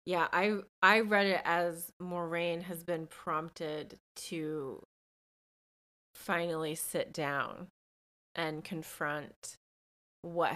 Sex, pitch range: female, 150-180 Hz